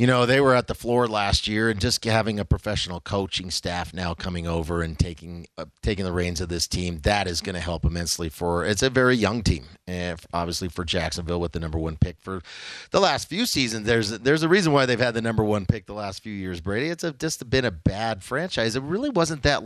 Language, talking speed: English, 245 wpm